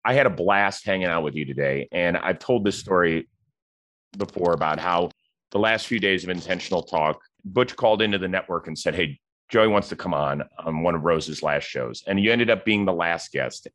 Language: English